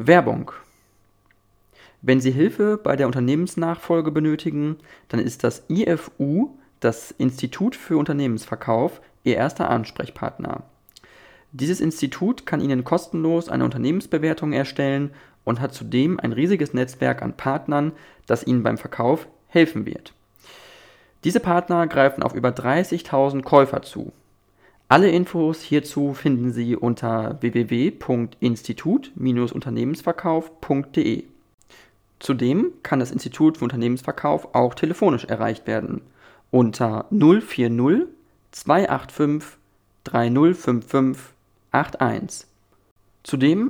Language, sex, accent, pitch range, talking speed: German, male, German, 120-160 Hz, 95 wpm